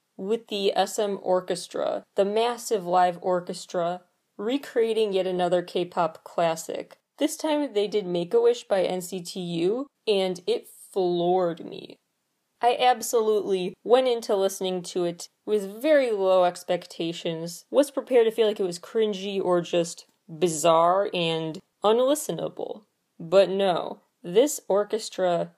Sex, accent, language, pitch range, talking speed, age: female, American, English, 180-230 Hz, 125 wpm, 20-39